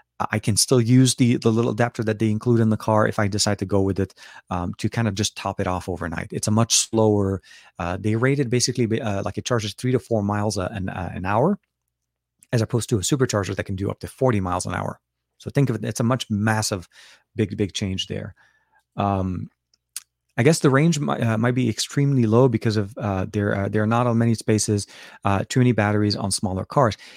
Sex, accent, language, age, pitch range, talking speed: male, American, English, 30-49, 100-120 Hz, 230 wpm